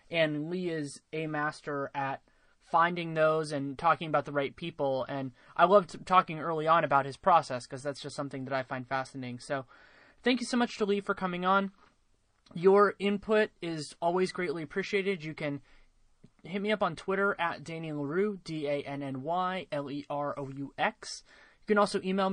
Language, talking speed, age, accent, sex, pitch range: English, 165 wpm, 20-39, American, male, 145-190 Hz